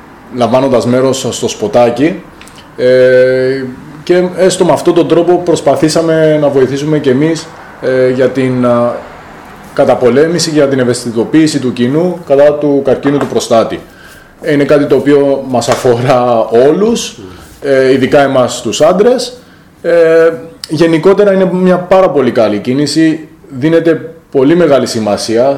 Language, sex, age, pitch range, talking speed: Greek, male, 20-39, 125-160 Hz, 135 wpm